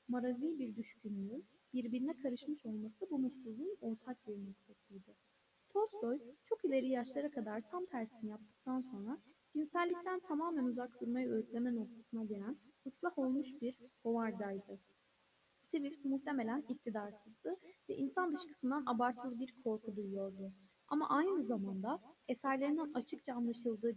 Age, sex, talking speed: 10-29, female, 120 wpm